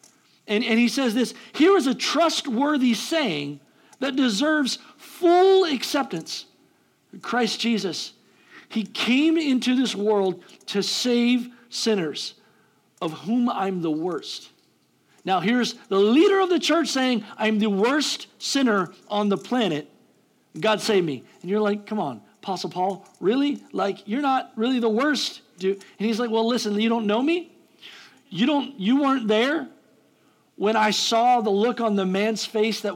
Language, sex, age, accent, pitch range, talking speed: English, male, 50-69, American, 200-275 Hz, 155 wpm